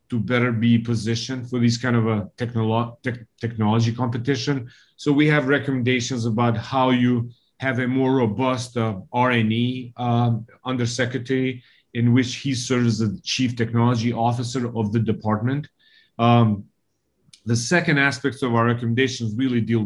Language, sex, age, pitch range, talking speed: English, male, 40-59, 115-130 Hz, 150 wpm